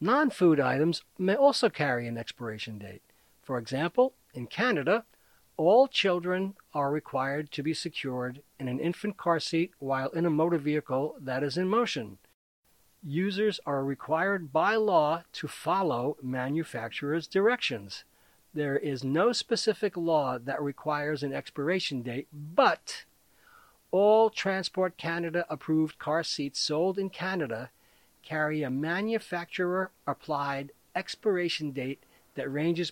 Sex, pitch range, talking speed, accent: male, 140-190 Hz, 130 wpm, American